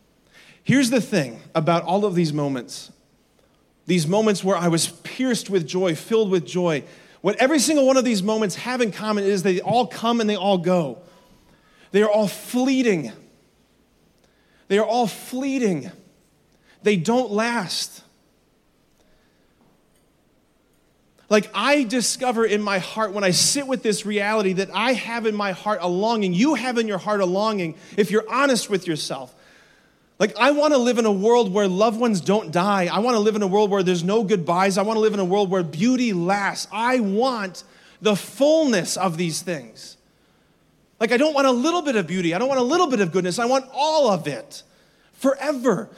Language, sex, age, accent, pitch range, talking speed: English, male, 30-49, American, 185-240 Hz, 190 wpm